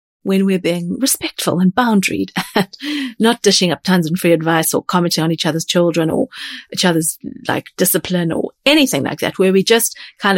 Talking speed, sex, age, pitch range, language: 190 wpm, female, 40-59, 160-195 Hz, English